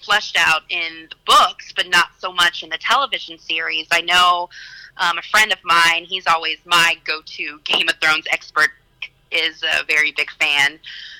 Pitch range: 150-170 Hz